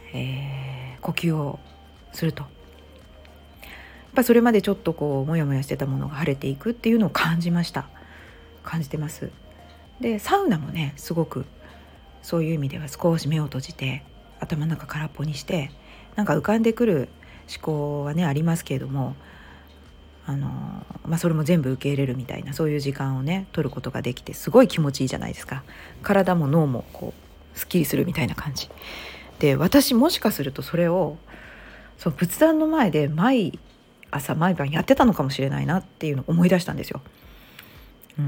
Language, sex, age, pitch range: Japanese, female, 40-59, 135-190 Hz